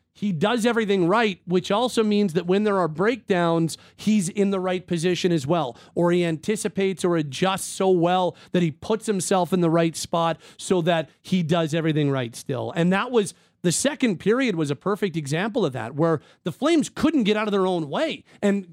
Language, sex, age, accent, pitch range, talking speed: English, male, 40-59, American, 160-210 Hz, 205 wpm